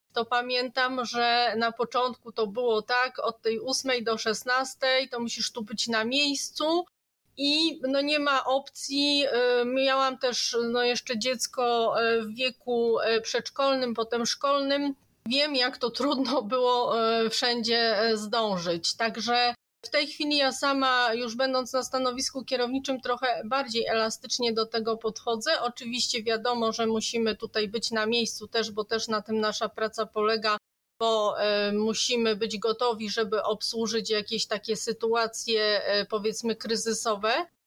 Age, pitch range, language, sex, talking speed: 30-49, 225-260 Hz, Polish, female, 130 wpm